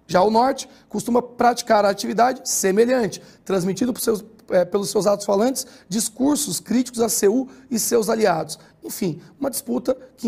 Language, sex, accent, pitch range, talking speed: Portuguese, male, Brazilian, 195-235 Hz, 160 wpm